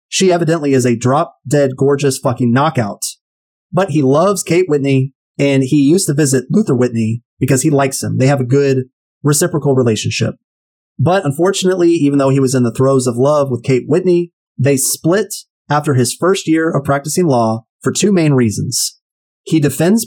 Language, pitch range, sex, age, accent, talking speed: English, 130-160 Hz, male, 30-49, American, 175 wpm